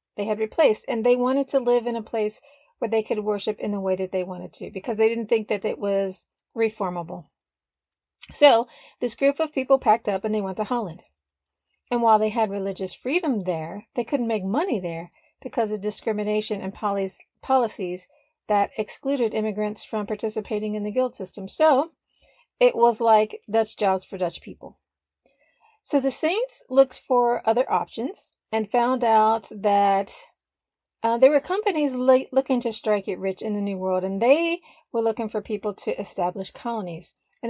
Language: English